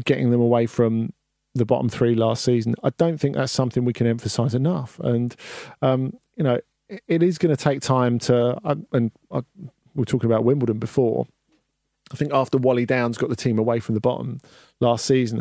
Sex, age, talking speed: male, 40-59, 205 wpm